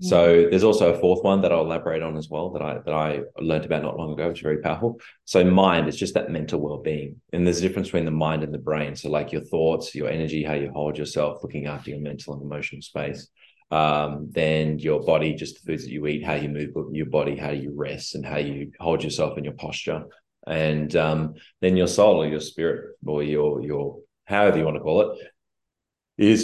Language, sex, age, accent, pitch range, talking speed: English, male, 20-39, Australian, 75-90 Hz, 235 wpm